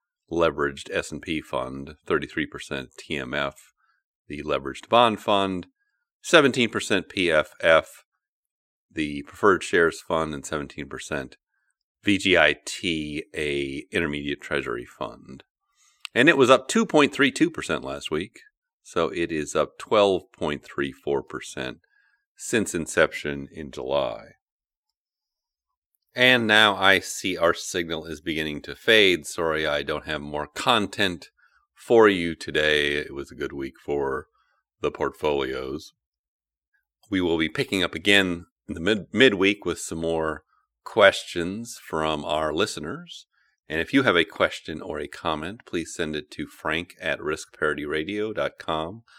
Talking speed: 120 wpm